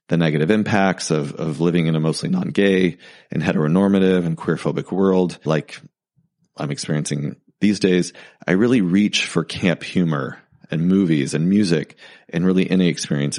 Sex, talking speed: male, 150 wpm